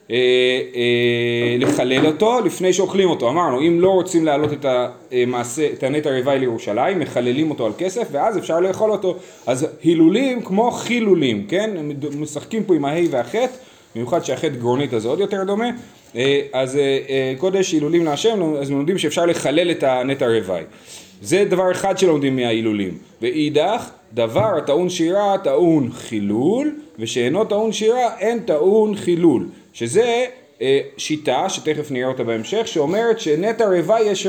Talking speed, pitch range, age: 140 wpm, 130-200 Hz, 30-49